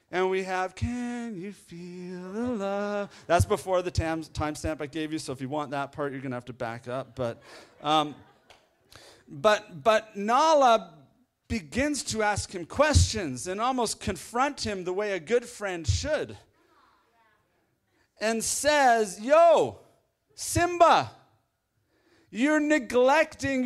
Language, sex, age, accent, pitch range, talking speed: English, male, 40-59, American, 155-260 Hz, 135 wpm